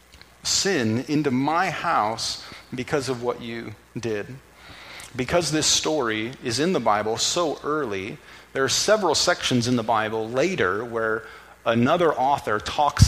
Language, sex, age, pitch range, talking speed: English, male, 40-59, 110-135 Hz, 140 wpm